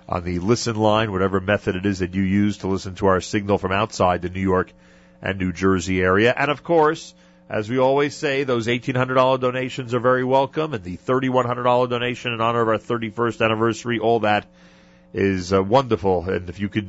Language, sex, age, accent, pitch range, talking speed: English, male, 40-59, American, 105-130 Hz, 205 wpm